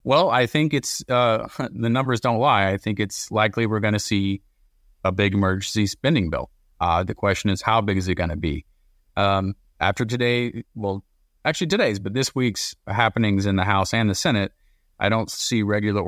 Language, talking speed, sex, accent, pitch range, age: English, 200 wpm, male, American, 95-120 Hz, 30-49